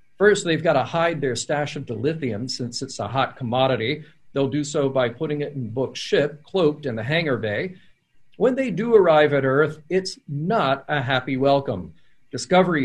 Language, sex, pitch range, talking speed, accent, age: English, male, 135-165 Hz, 185 wpm, American, 40-59